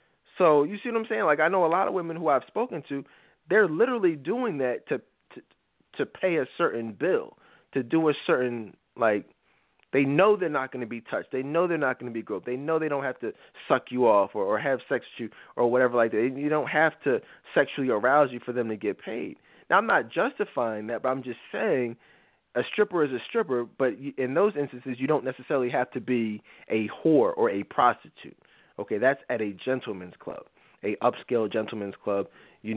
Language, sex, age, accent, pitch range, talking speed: English, male, 20-39, American, 115-150 Hz, 220 wpm